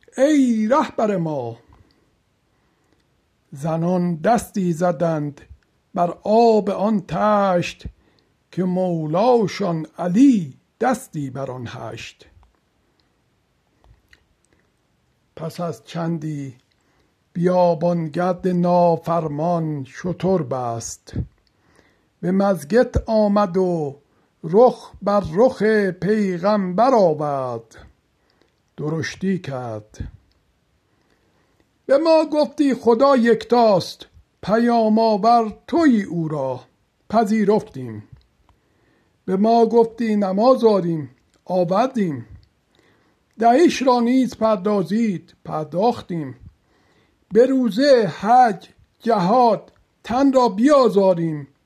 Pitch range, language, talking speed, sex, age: 150-225 Hz, Persian, 75 wpm, male, 60-79